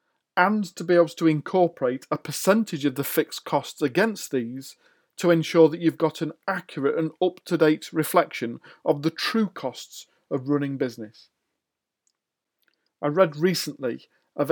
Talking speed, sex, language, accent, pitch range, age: 145 wpm, male, English, British, 145-180 Hz, 40-59